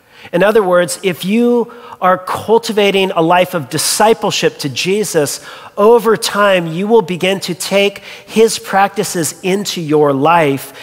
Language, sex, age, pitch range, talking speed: English, male, 40-59, 160-200 Hz, 140 wpm